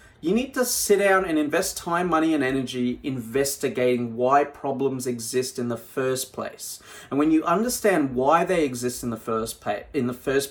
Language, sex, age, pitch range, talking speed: English, male, 30-49, 125-165 Hz, 190 wpm